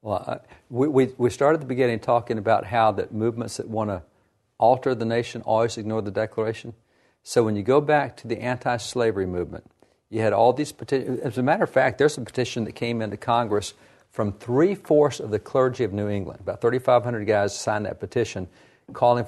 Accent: American